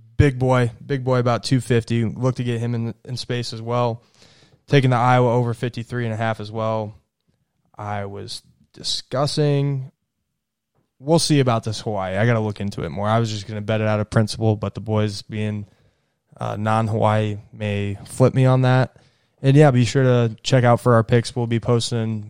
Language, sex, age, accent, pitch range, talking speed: English, male, 20-39, American, 110-130 Hz, 190 wpm